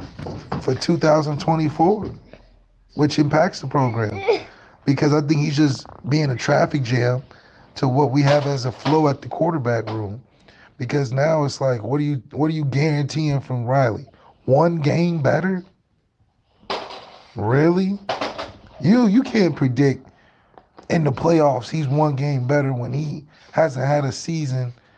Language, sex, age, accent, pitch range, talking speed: English, male, 30-49, American, 135-170 Hz, 145 wpm